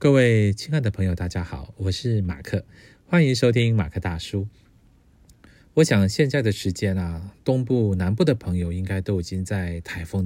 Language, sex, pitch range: Chinese, male, 95-125 Hz